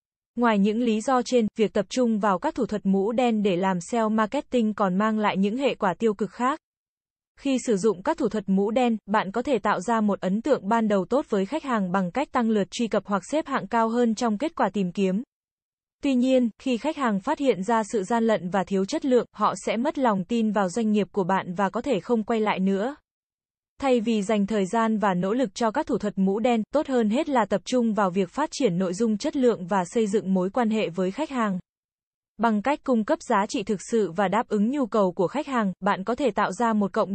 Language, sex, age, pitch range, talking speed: Vietnamese, female, 10-29, 200-245 Hz, 255 wpm